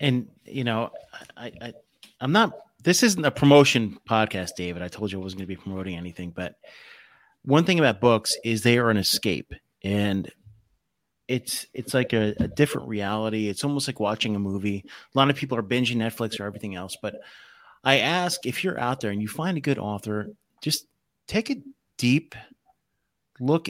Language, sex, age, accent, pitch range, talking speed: English, male, 30-49, American, 105-130 Hz, 190 wpm